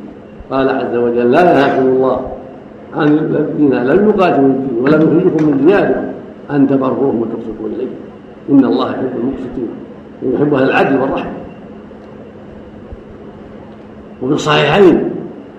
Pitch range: 125-155 Hz